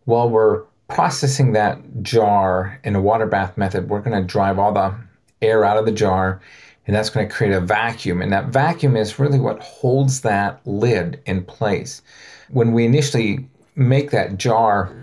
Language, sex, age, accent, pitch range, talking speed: English, male, 40-59, American, 95-120 Hz, 180 wpm